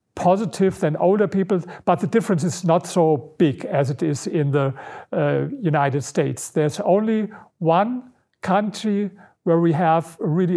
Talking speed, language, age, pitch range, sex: 155 wpm, Swedish, 50-69, 150-185 Hz, male